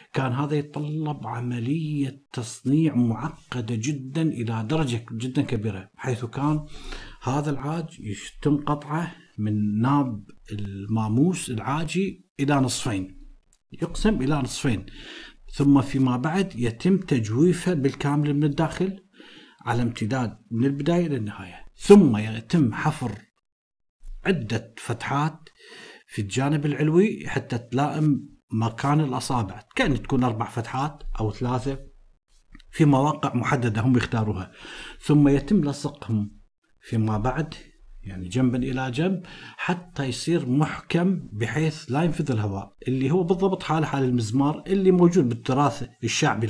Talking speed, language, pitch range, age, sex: 115 wpm, Arabic, 115-155 Hz, 50-69, male